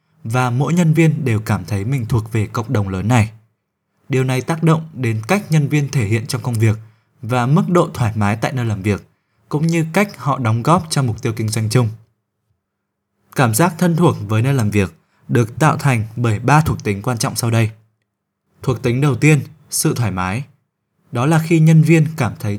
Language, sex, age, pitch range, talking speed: Vietnamese, male, 20-39, 110-150 Hz, 215 wpm